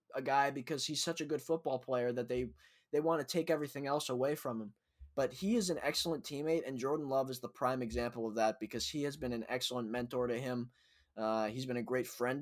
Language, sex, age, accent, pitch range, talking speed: English, male, 20-39, American, 120-150 Hz, 240 wpm